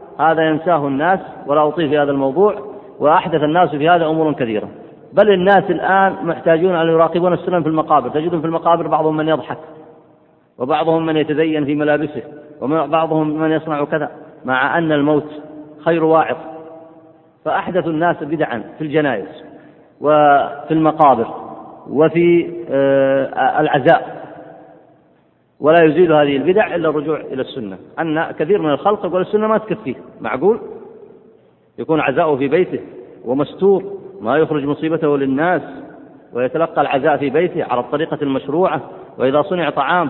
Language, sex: Arabic, male